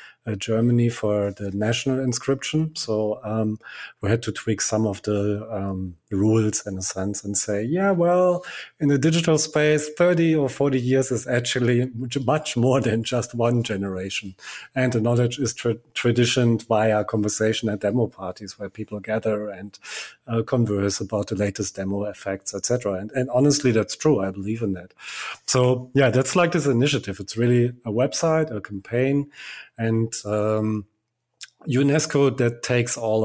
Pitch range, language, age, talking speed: 105-125 Hz, English, 30-49, 160 wpm